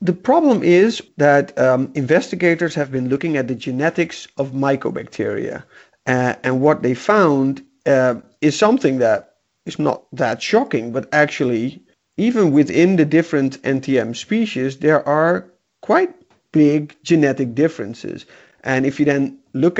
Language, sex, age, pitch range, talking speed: English, male, 40-59, 135-165 Hz, 140 wpm